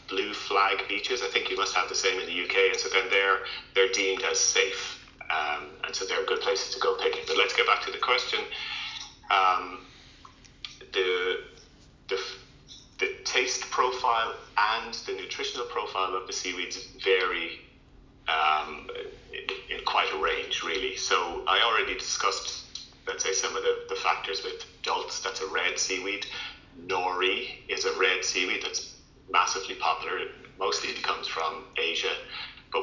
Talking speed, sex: 165 wpm, male